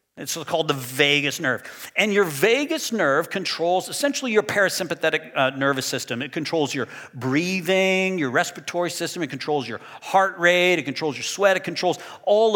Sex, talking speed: male, 165 wpm